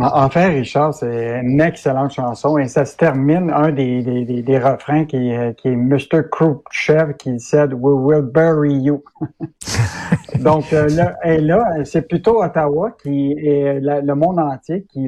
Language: French